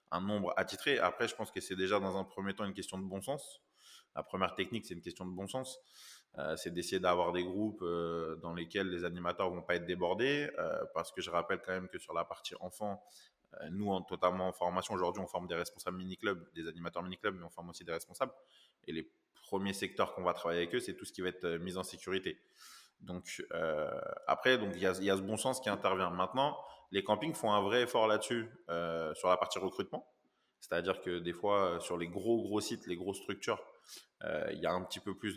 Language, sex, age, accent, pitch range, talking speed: French, male, 20-39, French, 90-105 Hz, 245 wpm